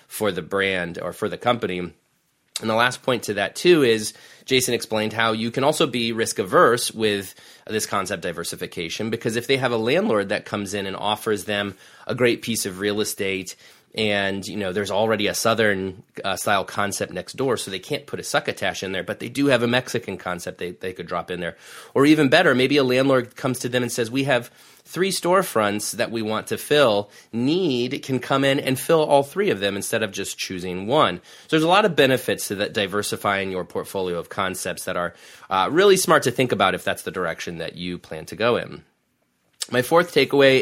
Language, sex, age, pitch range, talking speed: English, male, 30-49, 100-130 Hz, 215 wpm